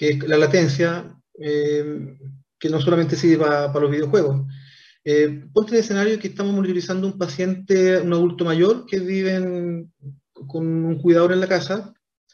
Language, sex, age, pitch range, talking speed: Spanish, male, 30-49, 145-180 Hz, 165 wpm